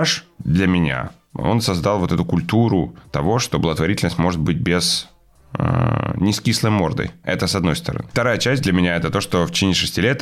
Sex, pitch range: male, 80-95 Hz